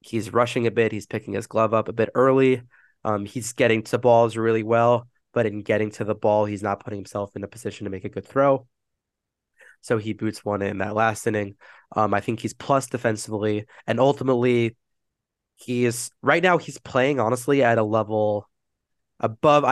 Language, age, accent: English, 20-39, American